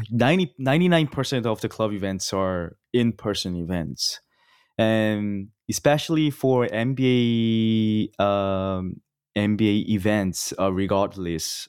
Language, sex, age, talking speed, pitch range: English, male, 20-39, 100 wpm, 100-125 Hz